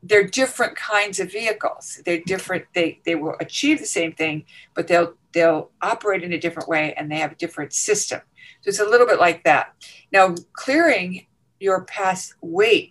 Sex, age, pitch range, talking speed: female, 50-69, 175-260 Hz, 185 wpm